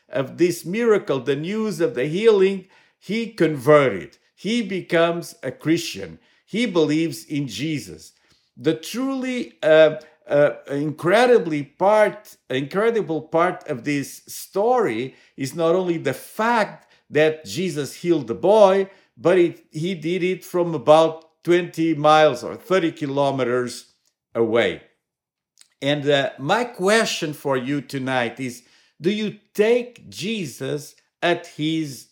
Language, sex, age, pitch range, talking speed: English, male, 50-69, 145-185 Hz, 125 wpm